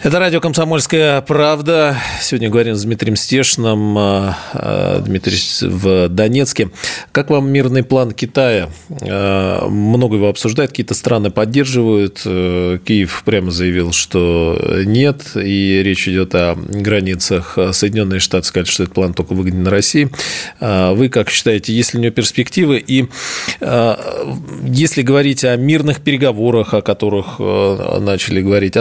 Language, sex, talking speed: Russian, male, 125 wpm